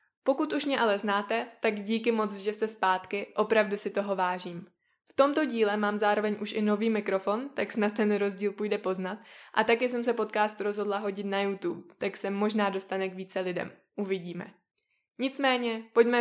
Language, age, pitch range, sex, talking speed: Czech, 20-39, 195-235 Hz, female, 180 wpm